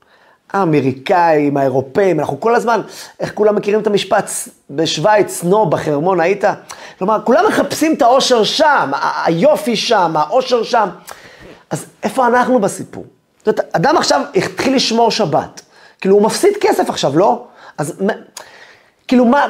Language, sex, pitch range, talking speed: Hebrew, male, 145-220 Hz, 135 wpm